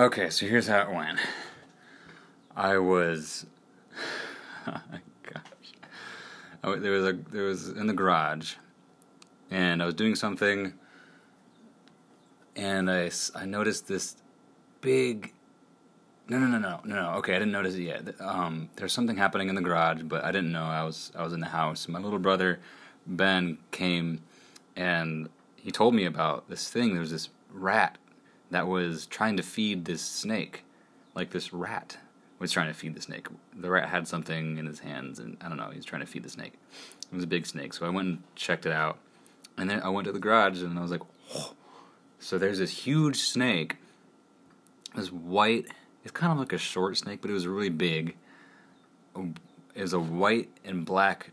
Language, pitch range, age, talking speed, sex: English, 85-95 Hz, 30-49, 190 wpm, male